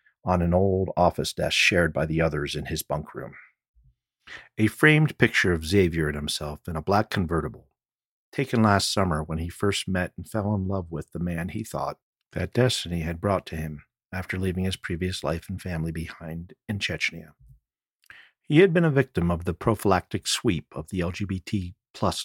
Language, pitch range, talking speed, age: English, 80-100 Hz, 185 wpm, 50-69